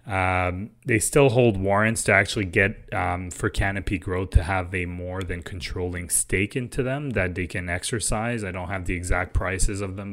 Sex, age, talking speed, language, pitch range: male, 20-39, 195 wpm, English, 90-110 Hz